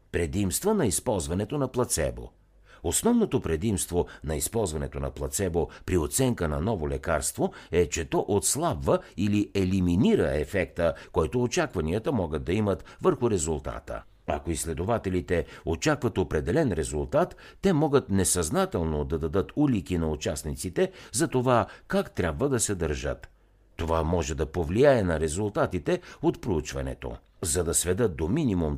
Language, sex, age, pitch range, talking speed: Bulgarian, male, 60-79, 80-115 Hz, 130 wpm